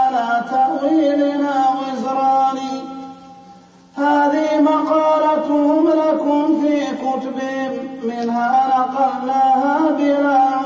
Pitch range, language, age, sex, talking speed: 265-300 Hz, Arabic, 40-59, male, 60 wpm